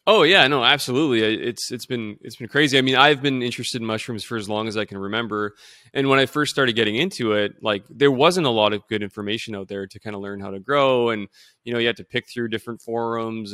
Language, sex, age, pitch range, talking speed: English, male, 20-39, 110-130 Hz, 260 wpm